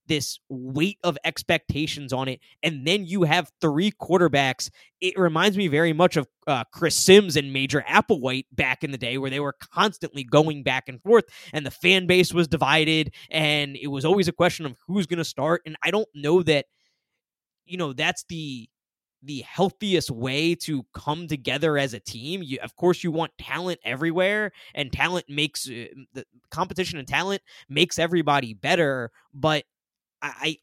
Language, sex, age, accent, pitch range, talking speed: English, male, 20-39, American, 135-180 Hz, 180 wpm